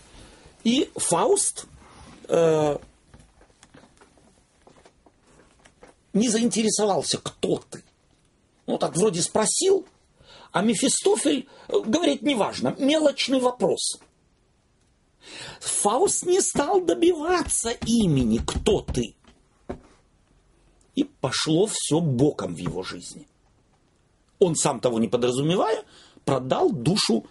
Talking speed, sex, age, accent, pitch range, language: 85 wpm, male, 50-69, native, 165-255 Hz, Russian